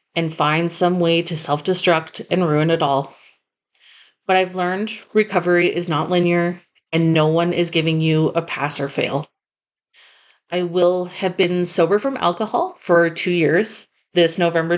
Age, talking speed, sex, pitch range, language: 30-49, 160 wpm, female, 170-205 Hz, English